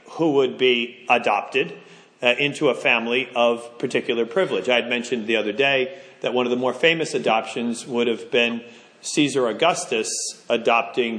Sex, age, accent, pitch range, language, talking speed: male, 40-59, American, 130-180 Hz, English, 160 wpm